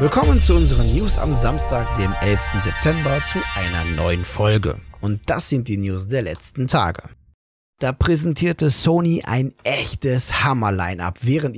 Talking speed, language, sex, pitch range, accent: 150 wpm, German, male, 100-135 Hz, German